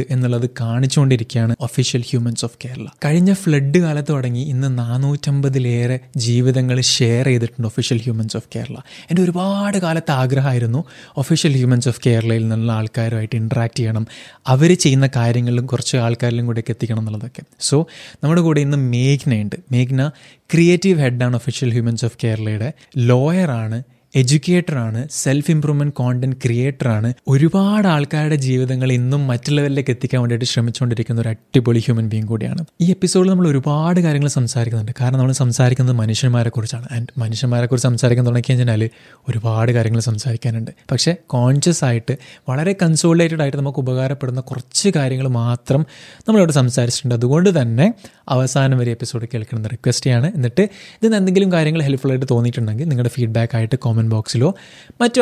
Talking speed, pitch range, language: 130 wpm, 120-145 Hz, Malayalam